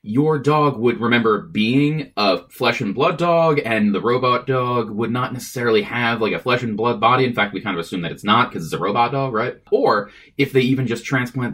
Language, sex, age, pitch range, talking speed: English, male, 20-39, 115-155 Hz, 235 wpm